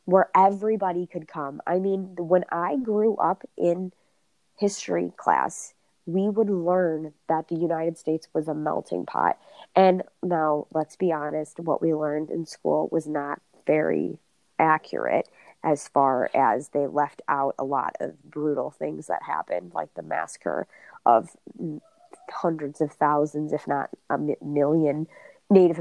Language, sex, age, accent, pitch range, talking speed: English, female, 20-39, American, 155-180 Hz, 145 wpm